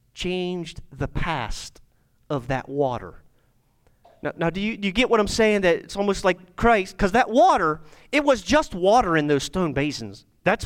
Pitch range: 185-260 Hz